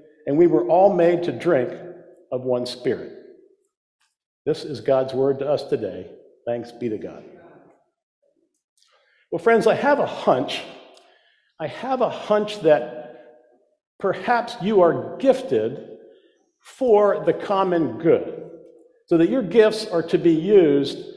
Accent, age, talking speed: American, 50-69, 135 wpm